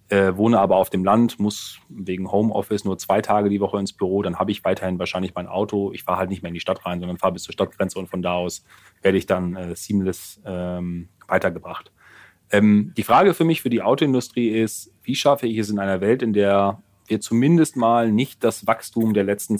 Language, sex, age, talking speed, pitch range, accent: German, male, 30-49, 225 wpm, 95-110 Hz, German